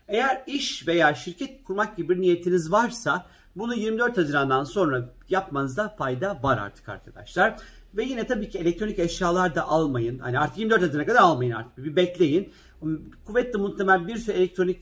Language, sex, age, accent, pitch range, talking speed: Turkish, male, 50-69, native, 140-190 Hz, 160 wpm